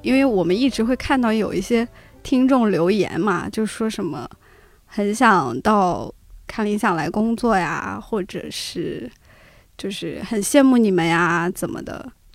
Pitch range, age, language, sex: 195-250 Hz, 20-39, Chinese, female